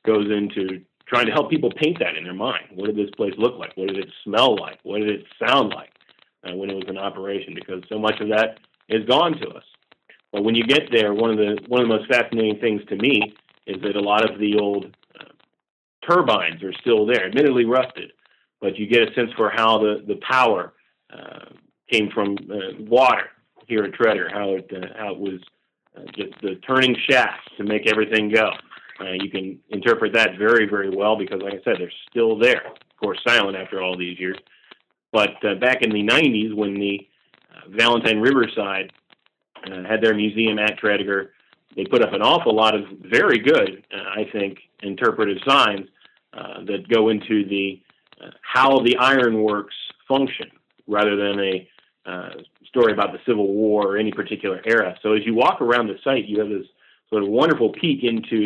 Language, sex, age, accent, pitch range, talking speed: English, male, 40-59, American, 100-115 Hz, 200 wpm